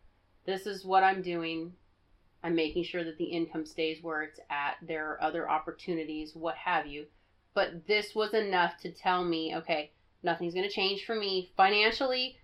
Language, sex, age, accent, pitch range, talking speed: English, female, 30-49, American, 160-185 Hz, 180 wpm